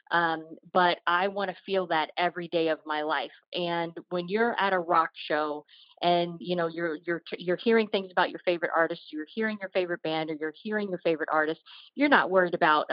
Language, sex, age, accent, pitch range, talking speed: English, female, 40-59, American, 160-195 Hz, 215 wpm